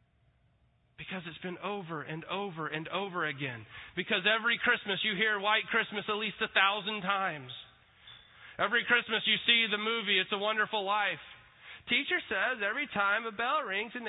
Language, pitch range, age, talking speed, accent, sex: English, 150-210 Hz, 30-49, 165 wpm, American, male